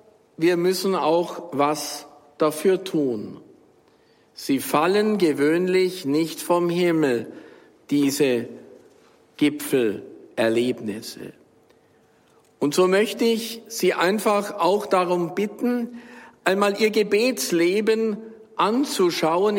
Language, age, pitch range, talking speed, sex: German, 50-69, 155-210 Hz, 85 wpm, male